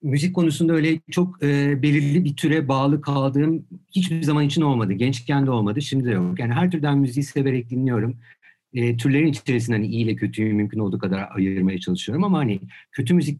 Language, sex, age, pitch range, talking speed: Turkish, male, 50-69, 110-150 Hz, 190 wpm